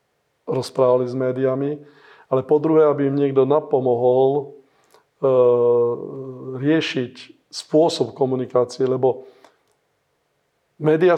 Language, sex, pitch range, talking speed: Slovak, male, 130-150 Hz, 80 wpm